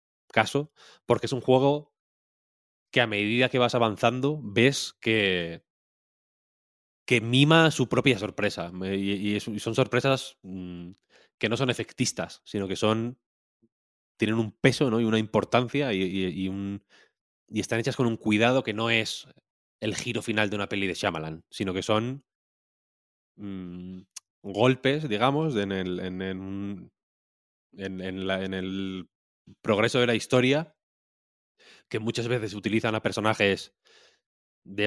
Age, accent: 20-39, Spanish